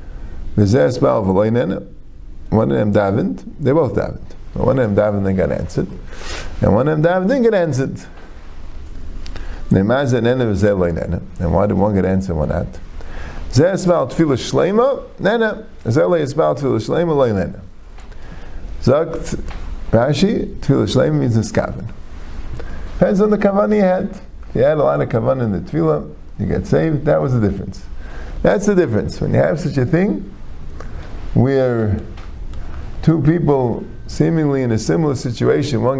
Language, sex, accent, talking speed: English, male, American, 160 wpm